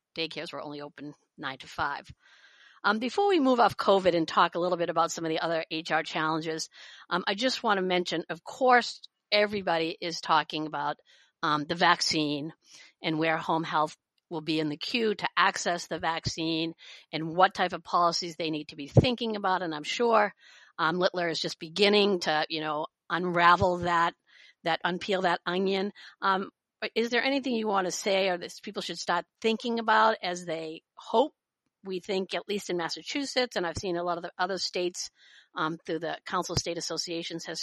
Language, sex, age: English, female, 50-69